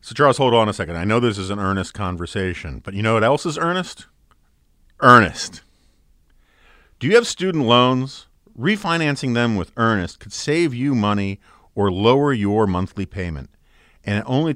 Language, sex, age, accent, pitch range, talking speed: English, male, 50-69, American, 95-150 Hz, 175 wpm